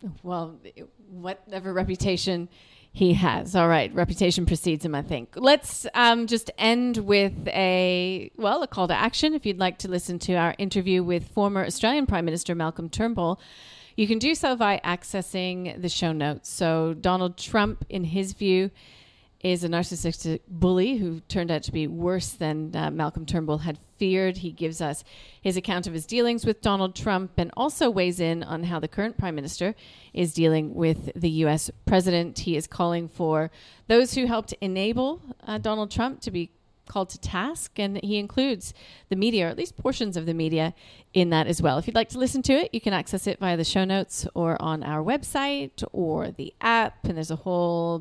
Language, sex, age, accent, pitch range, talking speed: English, female, 40-59, American, 165-215 Hz, 190 wpm